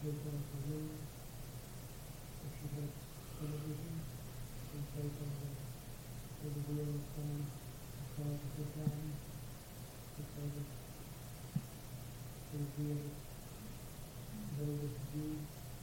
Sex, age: male, 40-59